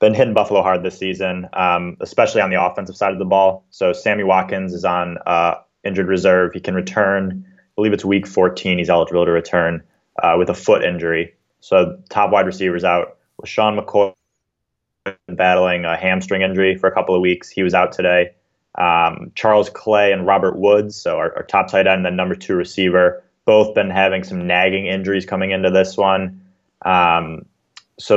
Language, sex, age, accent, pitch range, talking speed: English, male, 20-39, American, 90-100 Hz, 185 wpm